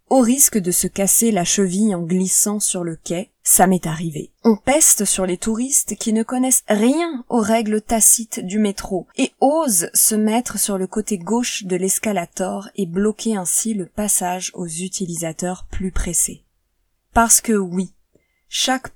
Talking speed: 165 wpm